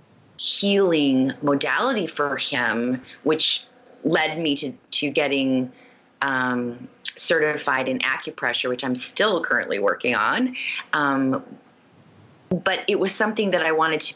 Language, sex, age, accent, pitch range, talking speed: English, female, 30-49, American, 130-180 Hz, 125 wpm